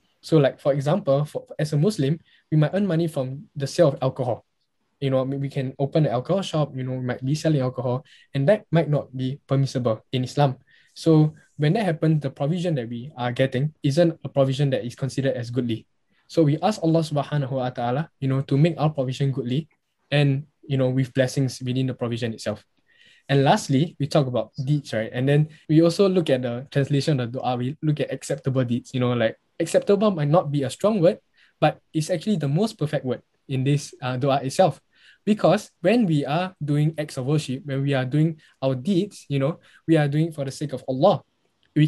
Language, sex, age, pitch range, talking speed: English, male, 10-29, 135-165 Hz, 215 wpm